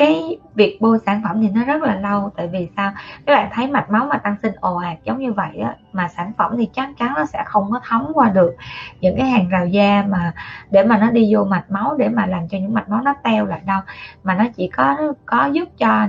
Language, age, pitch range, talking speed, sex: Vietnamese, 20-39, 185-240 Hz, 270 wpm, female